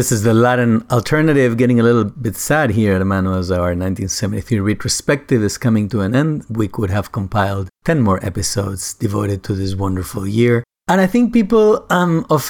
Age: 40-59